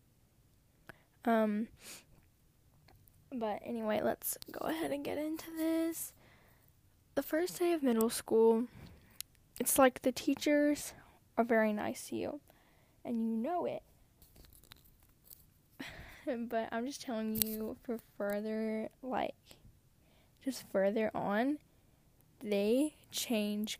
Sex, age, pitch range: female, 10-29, 210-260 Hz